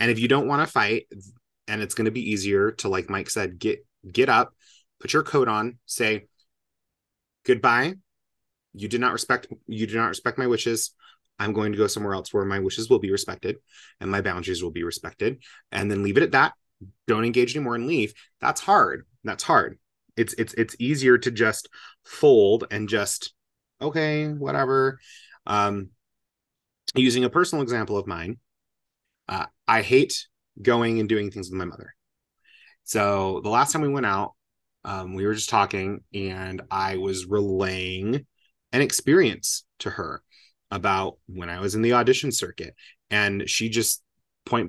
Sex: male